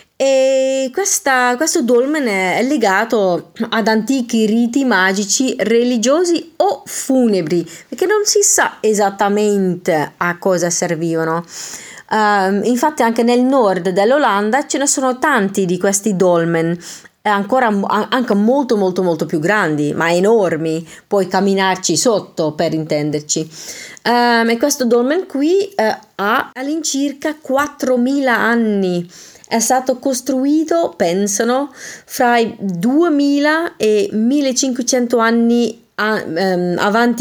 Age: 30-49